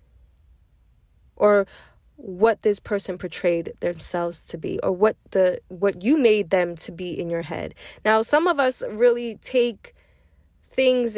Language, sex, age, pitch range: English, female, 10-29, 175-240 Hz